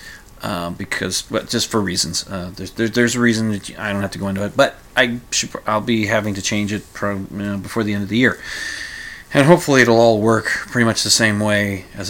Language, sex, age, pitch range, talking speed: English, male, 30-49, 100-125 Hz, 245 wpm